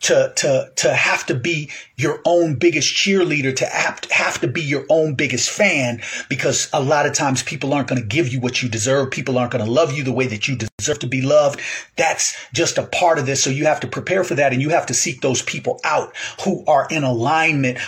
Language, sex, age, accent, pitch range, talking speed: English, male, 40-59, American, 125-150 Hz, 240 wpm